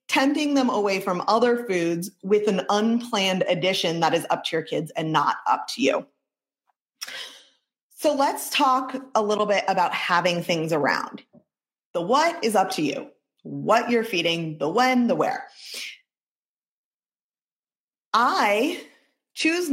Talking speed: 140 wpm